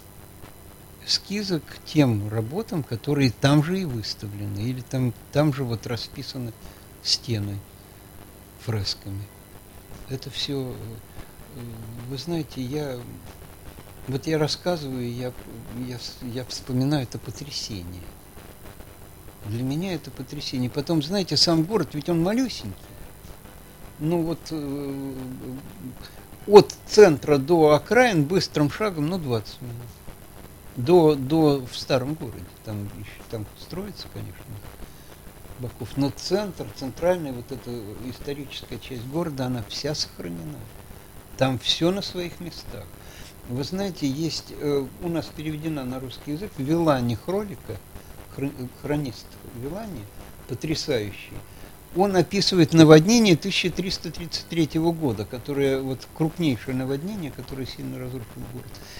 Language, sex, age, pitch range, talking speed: Russian, male, 60-79, 100-150 Hz, 110 wpm